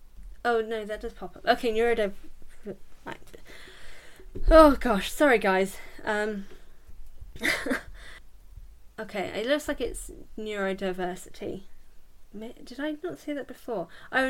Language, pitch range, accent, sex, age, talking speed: English, 185-225 Hz, British, female, 10-29, 110 wpm